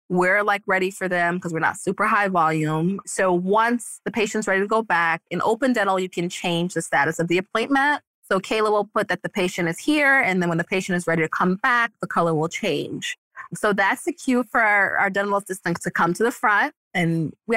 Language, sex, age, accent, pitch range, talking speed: English, female, 20-39, American, 170-220 Hz, 235 wpm